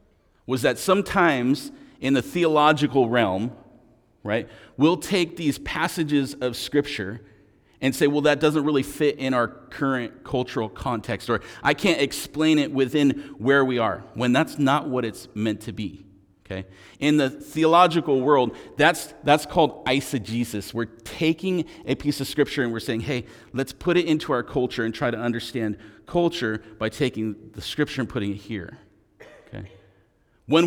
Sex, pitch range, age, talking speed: male, 110-155 Hz, 40-59, 160 wpm